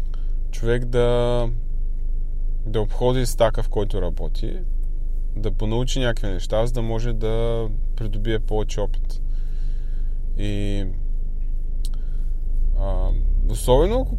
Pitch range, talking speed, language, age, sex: 85-120 Hz, 95 wpm, Bulgarian, 20-39, male